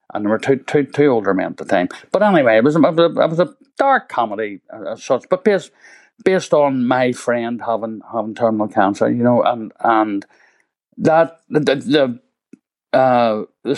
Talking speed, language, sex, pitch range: 185 wpm, English, male, 115-140 Hz